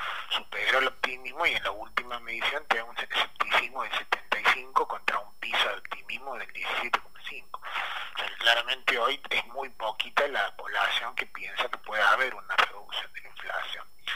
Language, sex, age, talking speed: Spanish, male, 30-49, 165 wpm